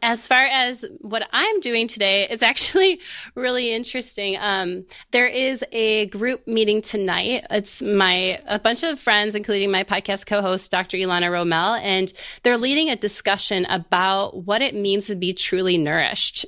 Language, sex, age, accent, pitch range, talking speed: English, female, 20-39, American, 180-215 Hz, 160 wpm